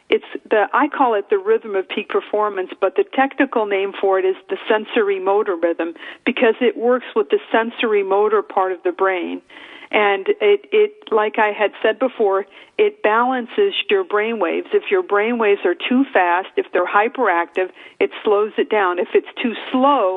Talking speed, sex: 180 wpm, female